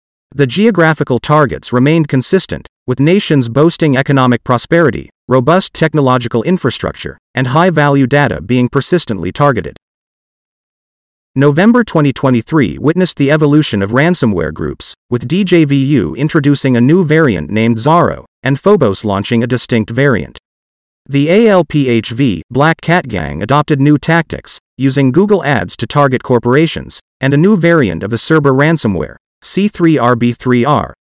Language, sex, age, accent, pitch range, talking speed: English, male, 40-59, American, 120-160 Hz, 125 wpm